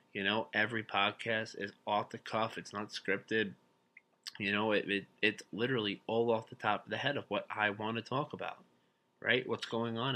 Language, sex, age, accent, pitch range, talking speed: English, male, 20-39, American, 100-120 Hz, 205 wpm